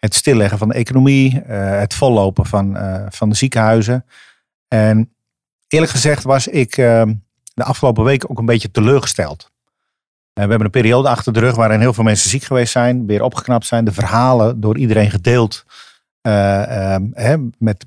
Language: Dutch